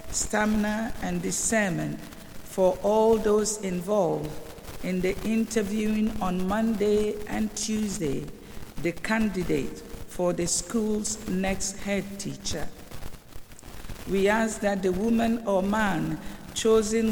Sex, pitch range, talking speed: female, 185-215 Hz, 105 wpm